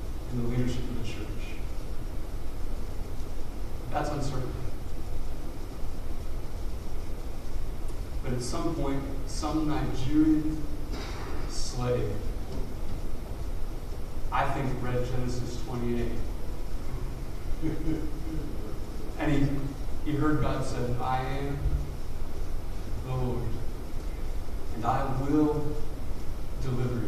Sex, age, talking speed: male, 40-59, 75 wpm